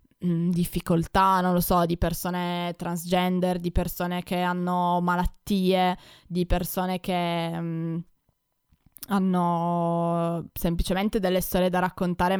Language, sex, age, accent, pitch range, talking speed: Italian, female, 20-39, native, 175-185 Hz, 100 wpm